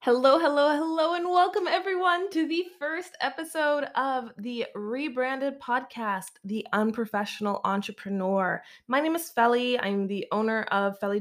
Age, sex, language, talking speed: 20-39, female, English, 140 wpm